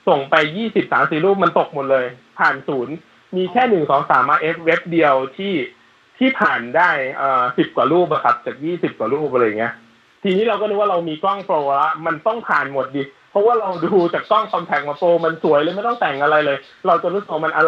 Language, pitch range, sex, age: Thai, 150-210 Hz, male, 20-39